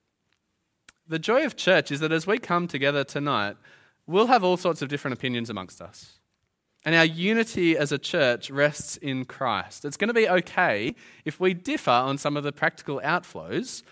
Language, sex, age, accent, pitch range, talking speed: English, male, 20-39, Australian, 130-180 Hz, 185 wpm